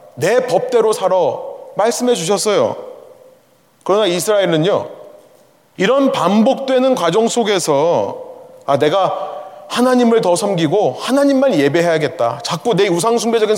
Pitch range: 160-250 Hz